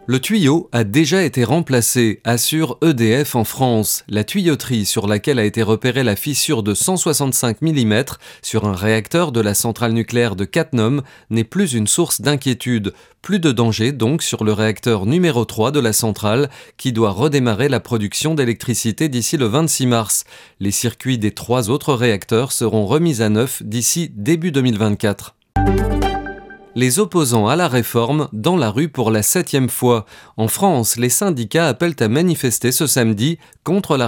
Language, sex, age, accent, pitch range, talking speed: French, male, 30-49, French, 110-145 Hz, 165 wpm